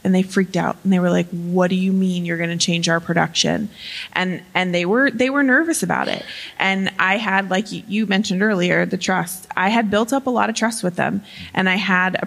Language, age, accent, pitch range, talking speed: English, 20-39, American, 180-210 Hz, 245 wpm